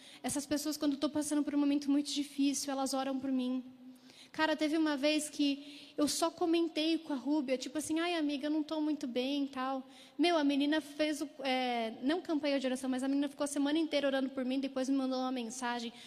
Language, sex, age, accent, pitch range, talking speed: Portuguese, female, 10-29, Brazilian, 255-300 Hz, 230 wpm